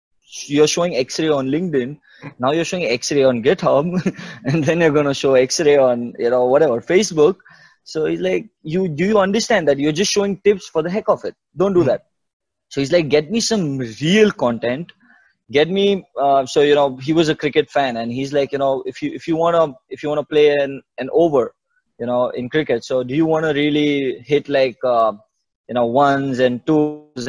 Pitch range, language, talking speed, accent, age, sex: 130-165 Hz, English, 215 wpm, Indian, 20-39, male